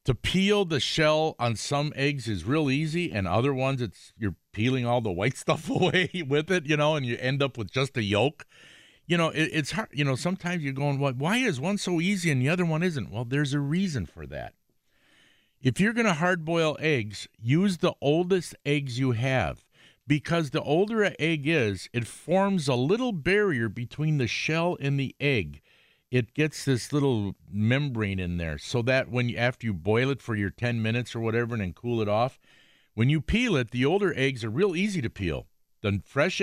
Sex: male